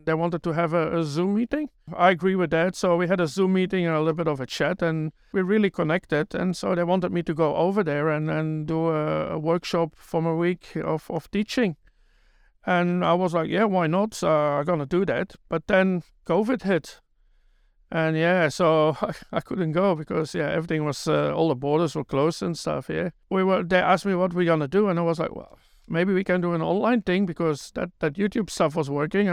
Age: 60-79